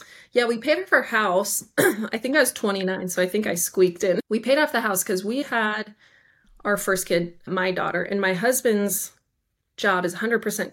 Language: English